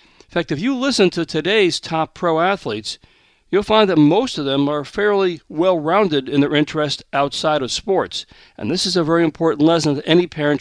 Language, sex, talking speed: English, male, 200 wpm